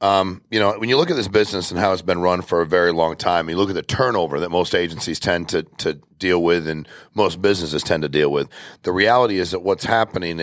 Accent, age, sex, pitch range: American, 40-59, male, 90-120 Hz